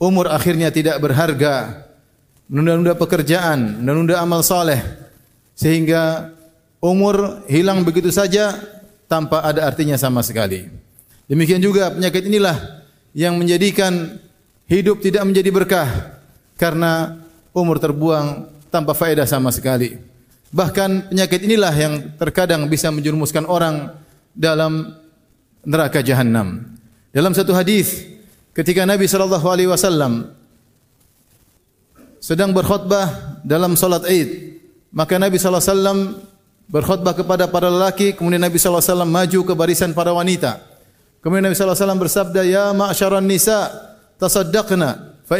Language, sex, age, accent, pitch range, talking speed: Indonesian, male, 30-49, native, 150-190 Hz, 110 wpm